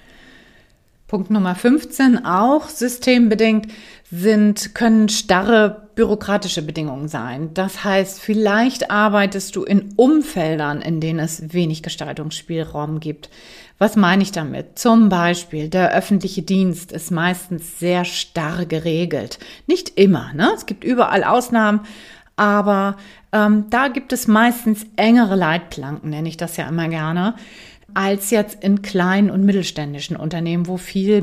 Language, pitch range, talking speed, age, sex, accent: German, 165-215 Hz, 130 wpm, 30-49, female, German